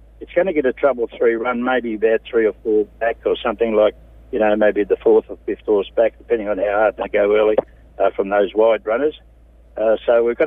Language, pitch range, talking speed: English, 110-160 Hz, 240 wpm